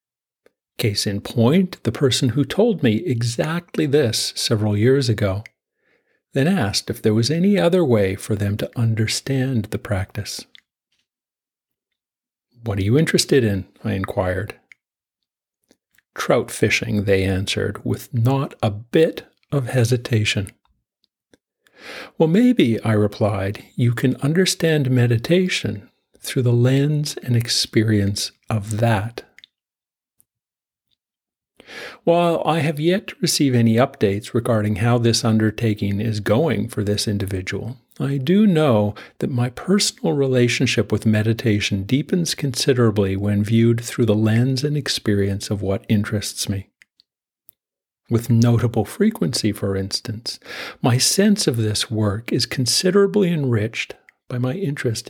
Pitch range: 105-140 Hz